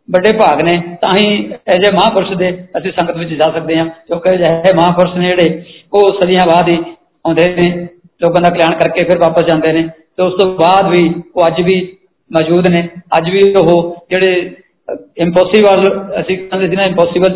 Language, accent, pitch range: Hindi, native, 170-185 Hz